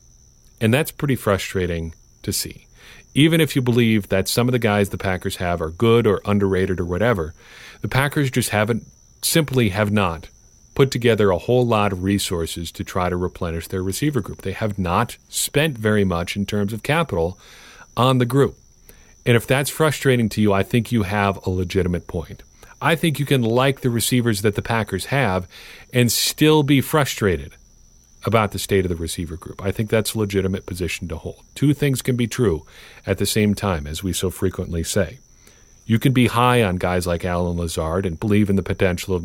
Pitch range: 90-120 Hz